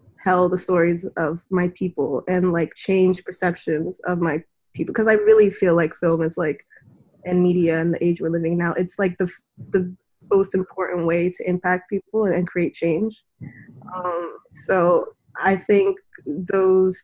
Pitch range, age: 175-190 Hz, 20-39